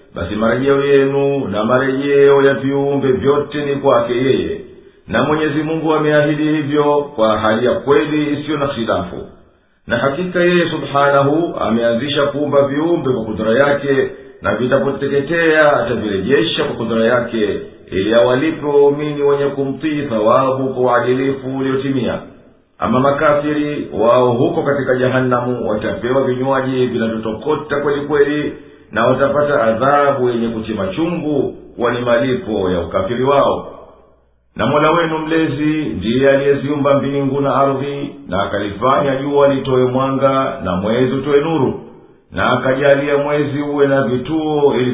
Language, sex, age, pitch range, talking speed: Swahili, male, 50-69, 125-145 Hz, 130 wpm